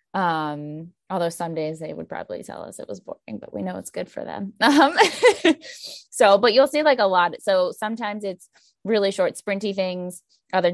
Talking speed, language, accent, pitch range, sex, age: 195 wpm, English, American, 155-180 Hz, female, 20-39